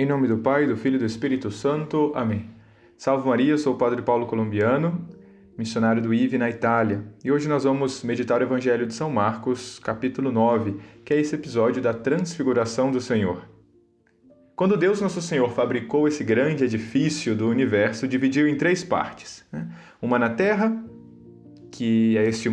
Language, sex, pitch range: Portuguese, male, 115-155 Hz